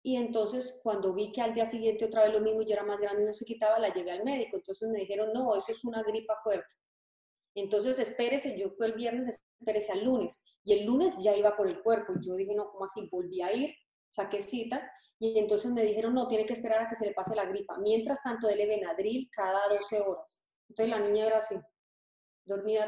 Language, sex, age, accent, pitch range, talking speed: Spanish, female, 30-49, Colombian, 210-245 Hz, 235 wpm